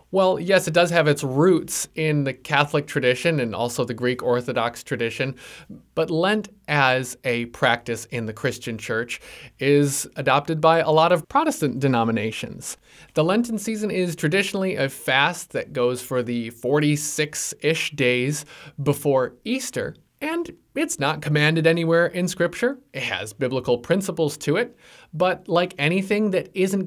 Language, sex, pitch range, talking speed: English, male, 125-170 Hz, 150 wpm